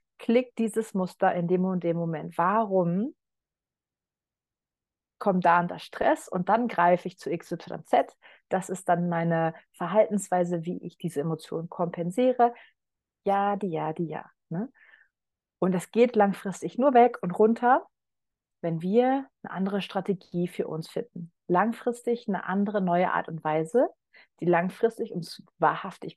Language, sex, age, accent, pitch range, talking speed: German, female, 30-49, German, 170-205 Hz, 145 wpm